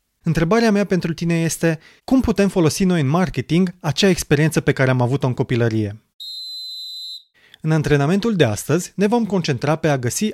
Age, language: 30-49, Romanian